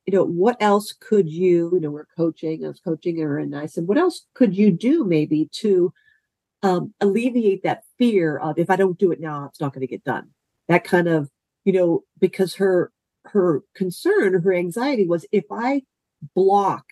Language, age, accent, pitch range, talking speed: English, 50-69, American, 155-195 Hz, 200 wpm